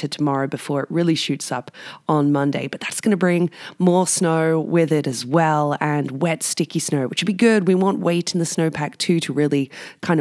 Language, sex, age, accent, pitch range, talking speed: English, female, 20-39, Australian, 145-185 Hz, 215 wpm